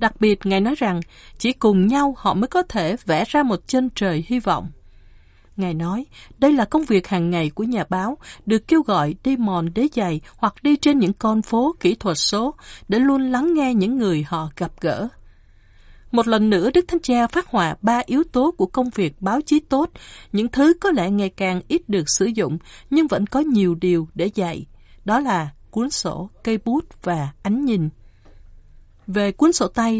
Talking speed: 205 wpm